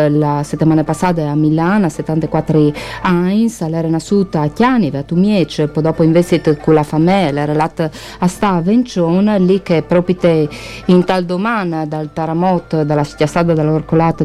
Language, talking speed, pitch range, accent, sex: Italian, 150 wpm, 160-205 Hz, native, female